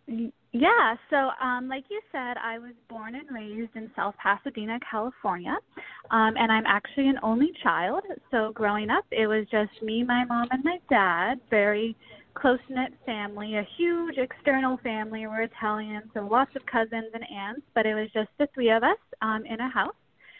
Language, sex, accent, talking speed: English, female, American, 180 wpm